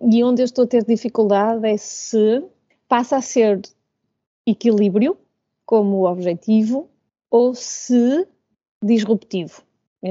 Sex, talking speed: female, 115 wpm